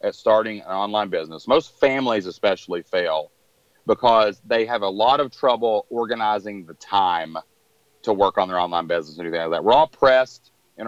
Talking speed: 180 wpm